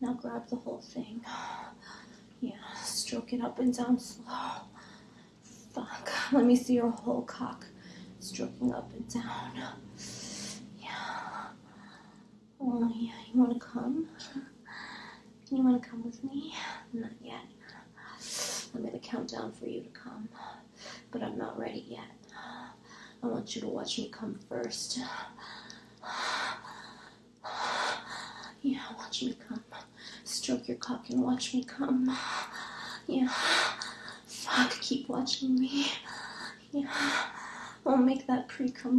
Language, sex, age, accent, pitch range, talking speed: English, female, 30-49, American, 235-285 Hz, 125 wpm